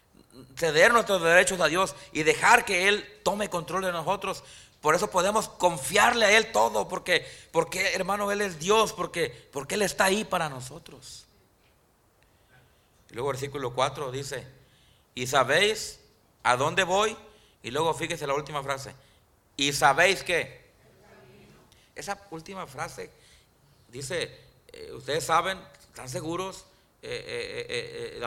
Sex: male